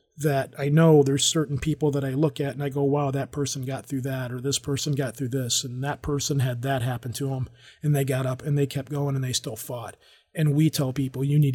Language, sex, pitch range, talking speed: English, male, 135-150 Hz, 265 wpm